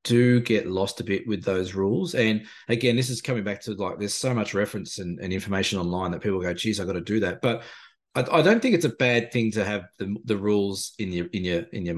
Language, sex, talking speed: English, male, 265 wpm